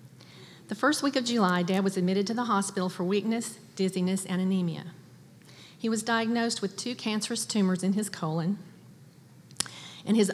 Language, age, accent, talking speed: English, 40-59, American, 165 wpm